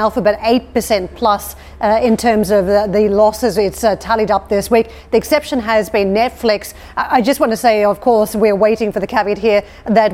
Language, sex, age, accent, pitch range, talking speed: English, female, 40-59, Australian, 210-230 Hz, 220 wpm